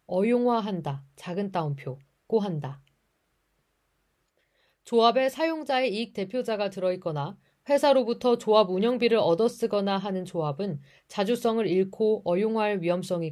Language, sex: Korean, female